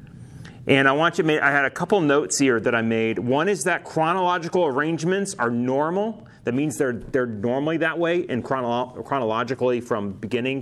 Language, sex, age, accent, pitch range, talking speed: English, male, 30-49, American, 115-145 Hz, 190 wpm